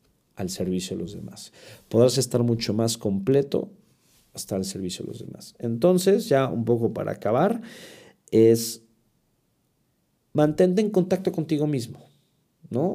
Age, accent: 50-69, Mexican